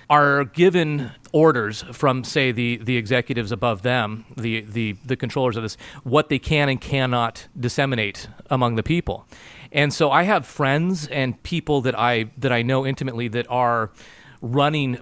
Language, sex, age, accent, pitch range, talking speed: English, male, 30-49, American, 115-135 Hz, 165 wpm